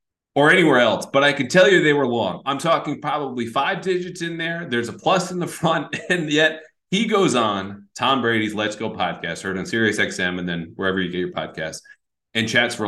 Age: 30-49